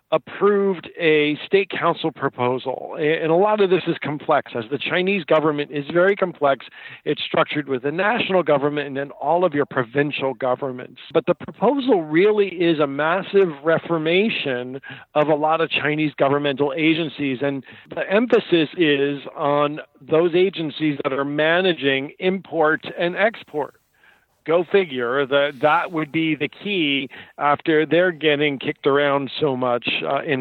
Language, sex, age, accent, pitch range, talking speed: English, male, 50-69, American, 145-180 Hz, 150 wpm